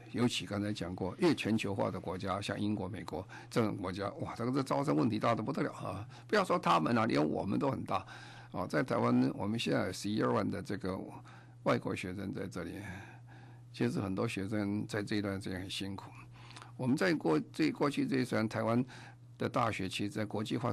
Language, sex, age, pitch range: Chinese, male, 50-69, 100-125 Hz